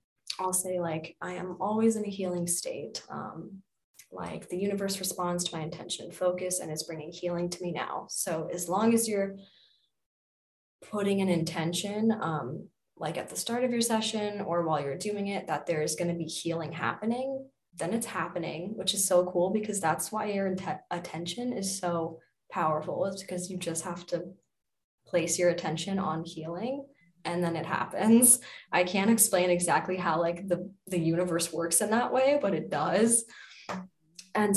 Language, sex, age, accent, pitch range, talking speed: English, female, 20-39, American, 170-205 Hz, 175 wpm